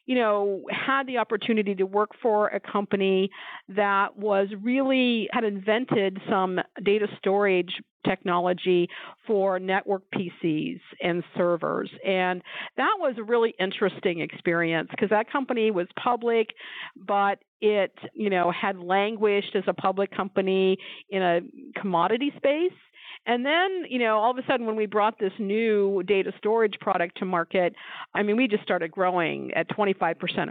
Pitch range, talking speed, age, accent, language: 190-225 Hz, 150 wpm, 50-69, American, English